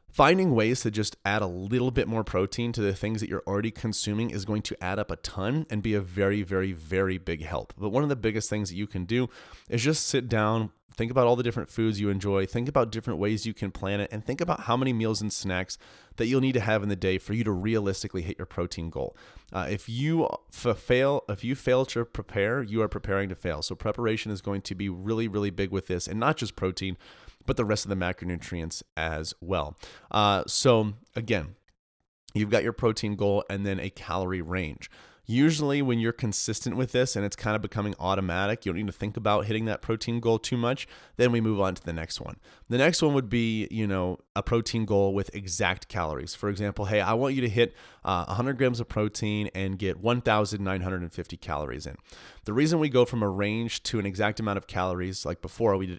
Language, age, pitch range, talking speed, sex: English, 30-49, 95-115 Hz, 230 wpm, male